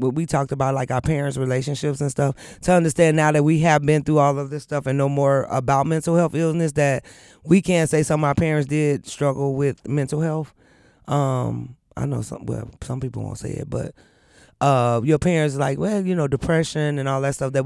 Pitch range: 140-170 Hz